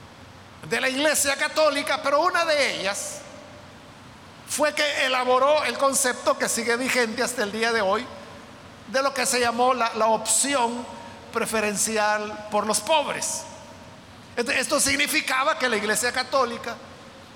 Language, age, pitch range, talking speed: Spanish, 50-69, 220-280 Hz, 135 wpm